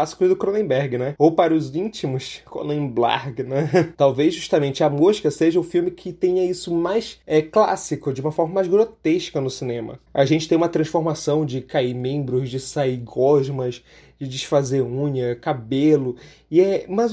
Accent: Brazilian